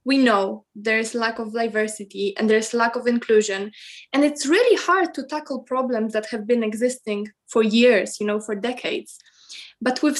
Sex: female